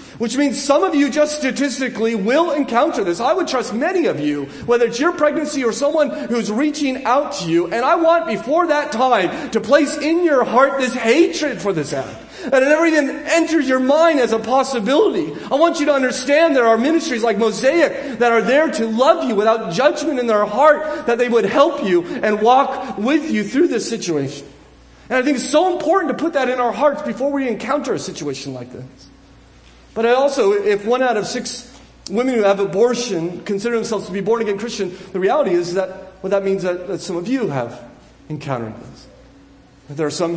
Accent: American